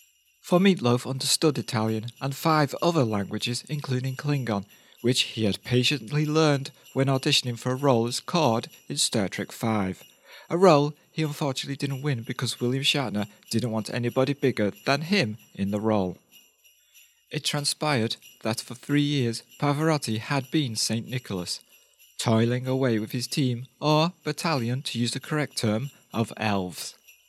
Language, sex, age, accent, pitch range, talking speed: English, male, 40-59, British, 115-145 Hz, 150 wpm